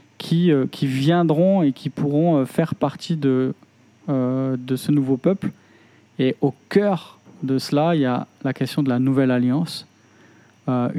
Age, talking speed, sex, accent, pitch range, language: 20-39, 170 wpm, male, French, 135-155 Hz, French